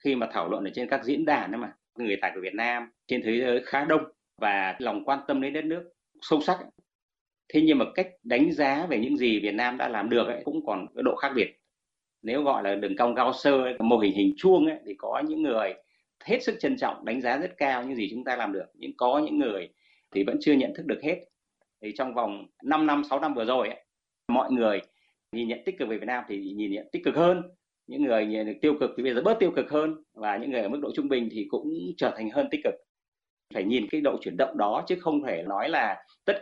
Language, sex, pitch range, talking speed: Vietnamese, male, 120-180 Hz, 255 wpm